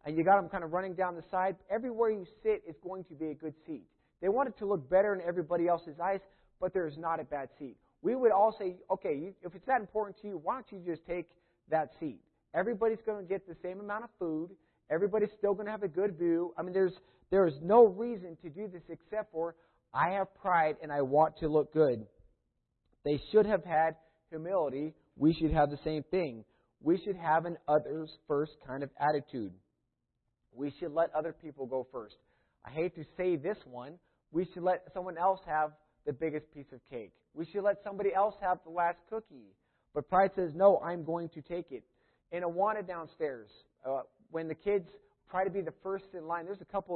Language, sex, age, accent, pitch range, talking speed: English, male, 40-59, American, 155-195 Hz, 220 wpm